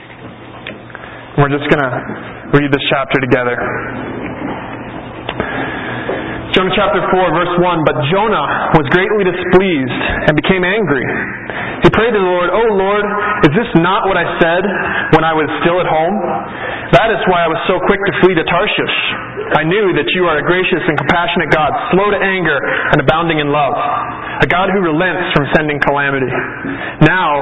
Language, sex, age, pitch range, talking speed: English, male, 30-49, 145-180 Hz, 165 wpm